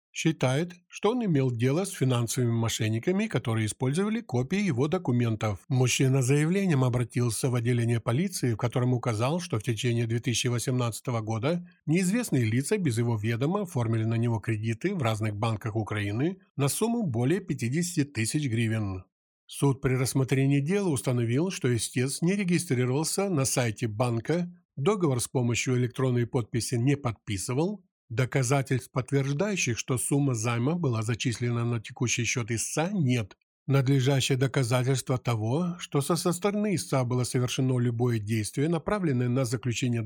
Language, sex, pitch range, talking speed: Ukrainian, male, 120-155 Hz, 135 wpm